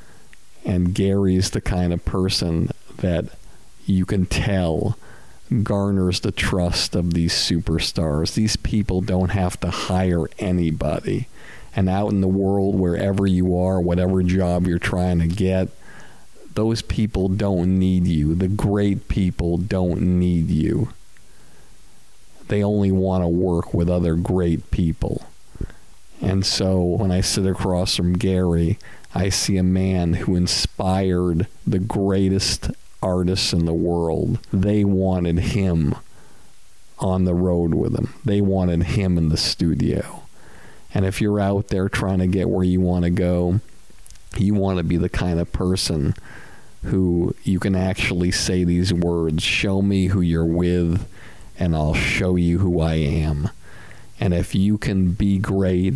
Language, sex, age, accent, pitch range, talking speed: English, male, 50-69, American, 85-100 Hz, 145 wpm